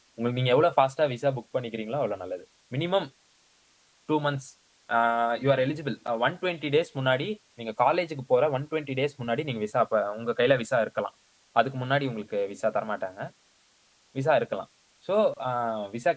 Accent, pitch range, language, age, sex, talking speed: native, 115-140 Hz, Tamil, 20-39, male, 150 wpm